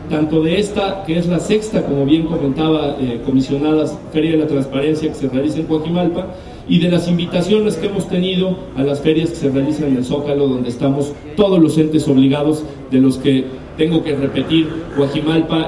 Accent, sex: Mexican, male